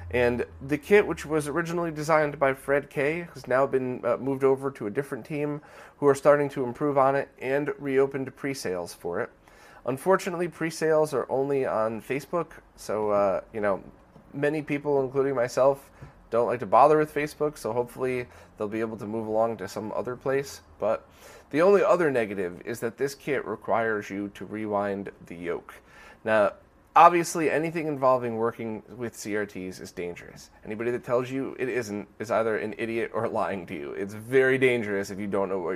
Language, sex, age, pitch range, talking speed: English, male, 30-49, 105-145 Hz, 185 wpm